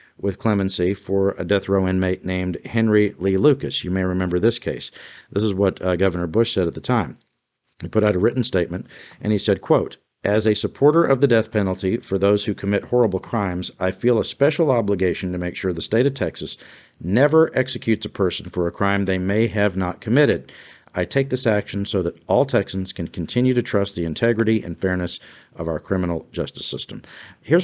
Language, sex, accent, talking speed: English, male, American, 205 wpm